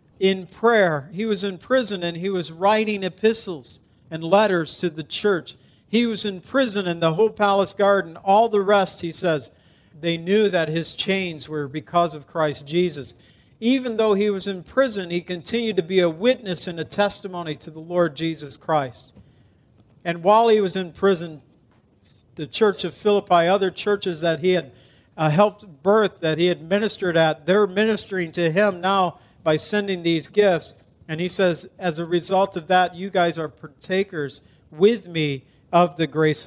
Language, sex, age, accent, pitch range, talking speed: English, male, 50-69, American, 145-190 Hz, 180 wpm